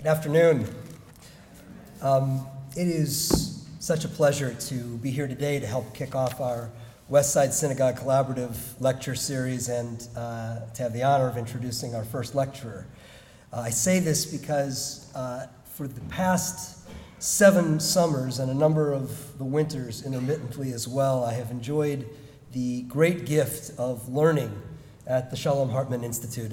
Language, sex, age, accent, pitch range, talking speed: English, male, 40-59, American, 125-155 Hz, 150 wpm